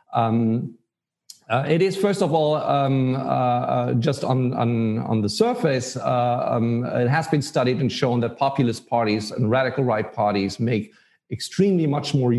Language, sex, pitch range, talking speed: English, male, 110-140 Hz, 170 wpm